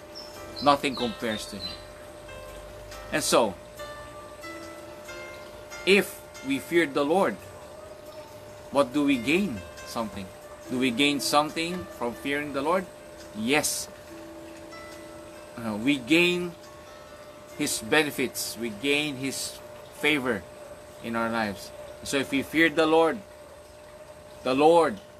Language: English